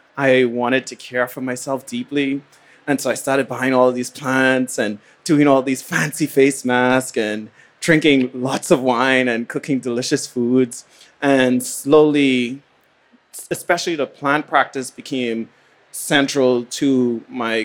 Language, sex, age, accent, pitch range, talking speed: English, male, 20-39, American, 115-130 Hz, 145 wpm